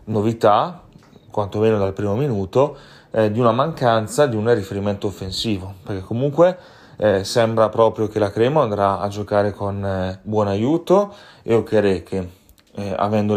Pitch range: 100-115 Hz